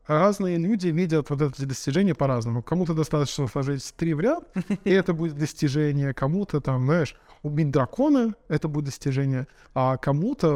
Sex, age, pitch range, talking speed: male, 20-39, 130-160 Hz, 155 wpm